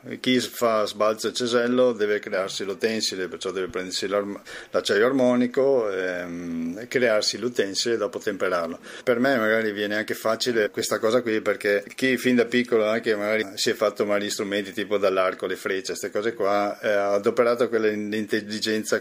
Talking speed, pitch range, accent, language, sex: 160 wpm, 100-120 Hz, native, Italian, male